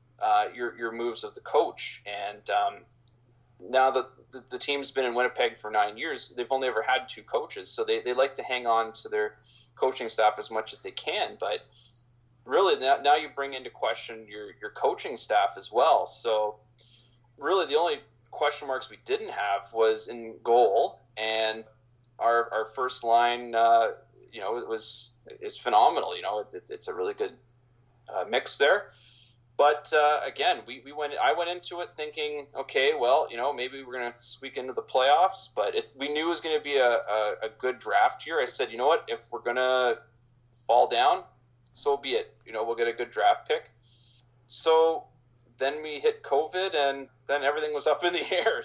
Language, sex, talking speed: English, male, 200 wpm